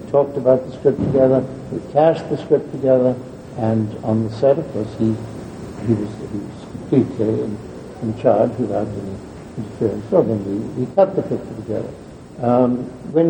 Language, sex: English, male